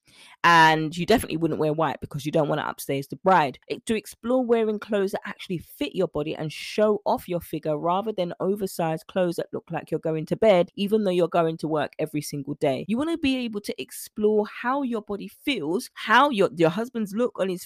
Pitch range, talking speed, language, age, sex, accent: 160-215 Hz, 225 wpm, English, 20-39, female, British